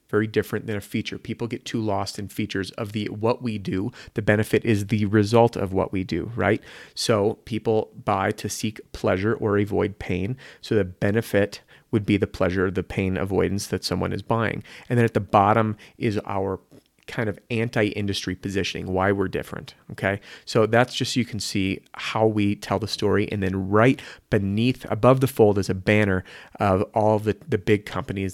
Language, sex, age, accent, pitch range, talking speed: English, male, 30-49, American, 95-115 Hz, 195 wpm